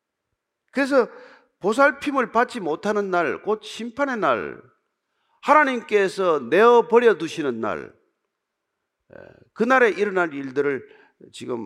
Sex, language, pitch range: male, Korean, 180-265 Hz